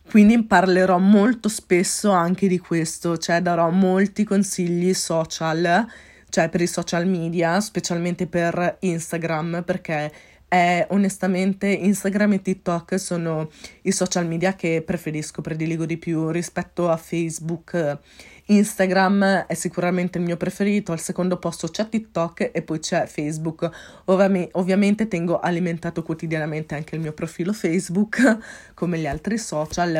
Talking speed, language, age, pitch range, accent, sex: 130 wpm, Italian, 20-39, 165-195 Hz, native, female